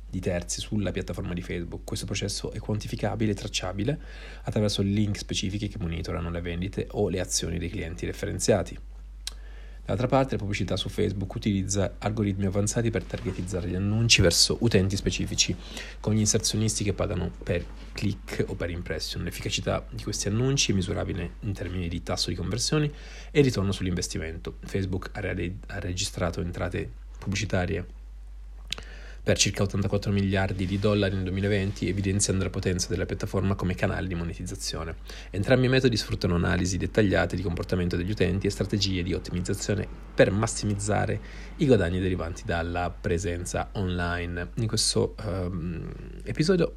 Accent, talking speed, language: native, 150 wpm, Italian